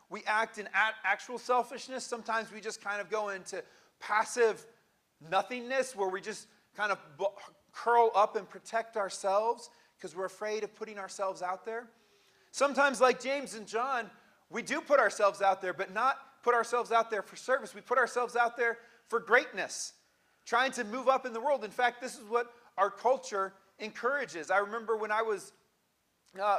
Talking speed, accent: 180 wpm, American